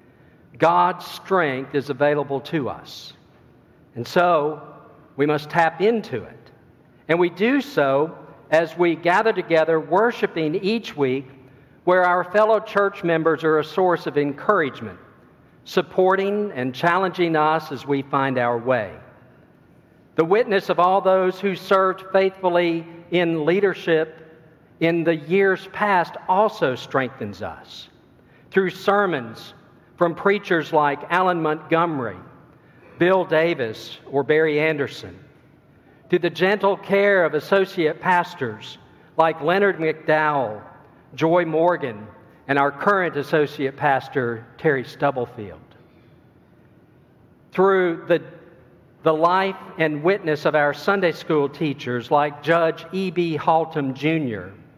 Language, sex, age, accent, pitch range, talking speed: English, male, 50-69, American, 145-180 Hz, 115 wpm